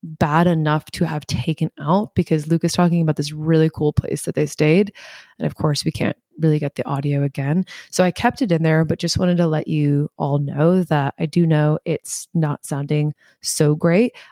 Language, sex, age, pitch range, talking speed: English, female, 20-39, 145-175 Hz, 215 wpm